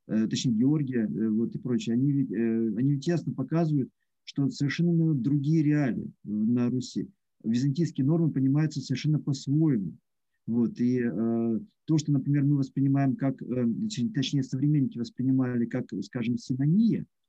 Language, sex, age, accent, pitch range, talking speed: Russian, male, 50-69, native, 130-170 Hz, 135 wpm